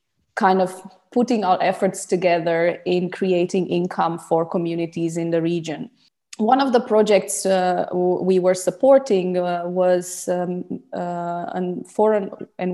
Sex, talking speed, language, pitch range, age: female, 135 wpm, English, 175-200 Hz, 20-39